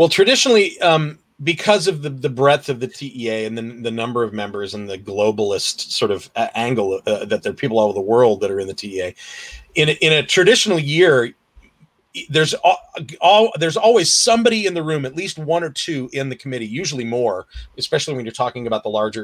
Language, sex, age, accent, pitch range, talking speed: English, male, 40-59, American, 115-155 Hz, 220 wpm